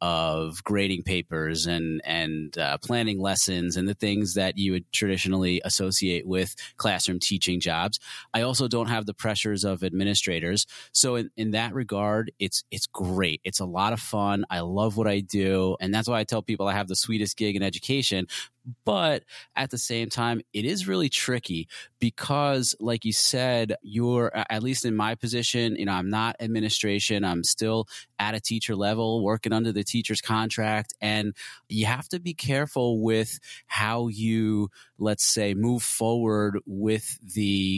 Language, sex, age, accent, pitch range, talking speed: English, male, 30-49, American, 95-115 Hz, 175 wpm